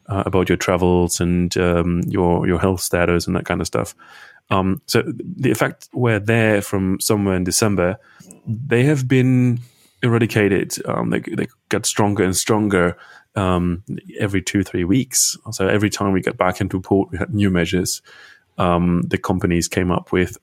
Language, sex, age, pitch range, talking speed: English, male, 20-39, 90-110 Hz, 175 wpm